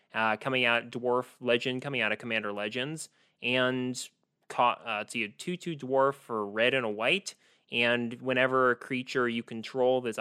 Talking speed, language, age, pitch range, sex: 165 wpm, English, 20-39, 115-145 Hz, male